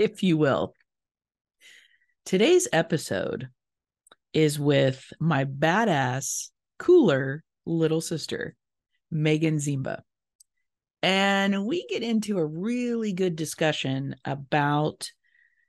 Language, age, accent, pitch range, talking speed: English, 40-59, American, 150-225 Hz, 90 wpm